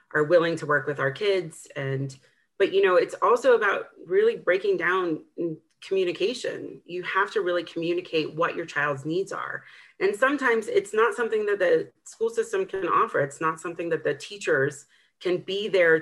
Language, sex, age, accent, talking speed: English, female, 40-59, American, 180 wpm